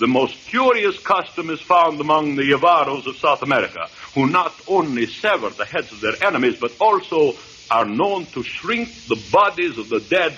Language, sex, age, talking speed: English, male, 60-79, 185 wpm